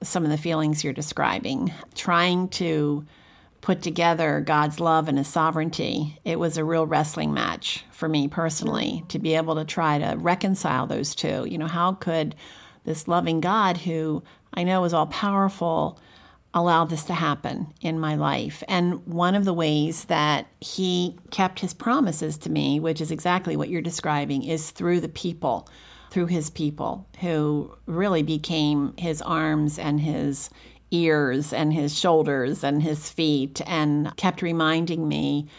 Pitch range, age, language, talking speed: 150-170 Hz, 50-69, English, 160 wpm